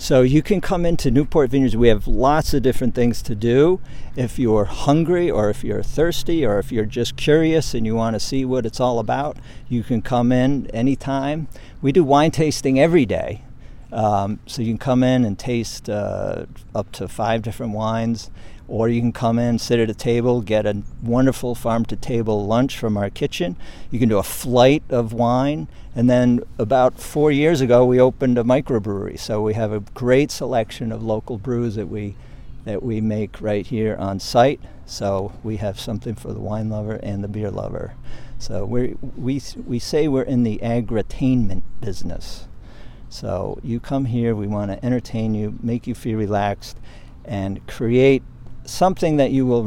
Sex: male